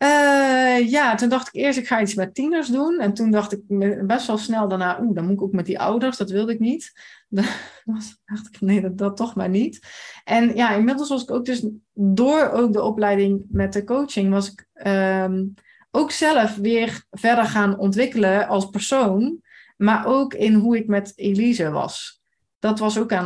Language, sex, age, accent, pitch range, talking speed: Dutch, female, 30-49, Dutch, 185-225 Hz, 195 wpm